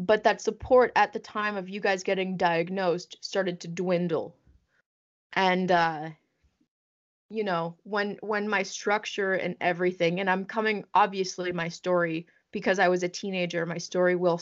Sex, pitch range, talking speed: female, 170-195 Hz, 160 wpm